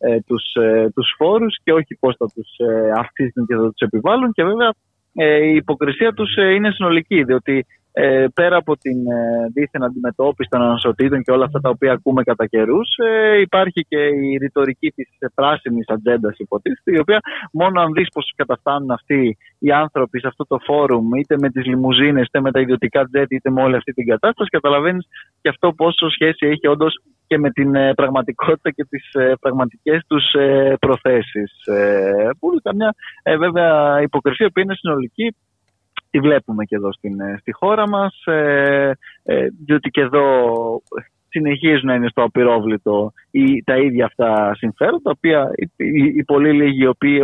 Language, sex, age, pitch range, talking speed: Greek, male, 20-39, 125-155 Hz, 175 wpm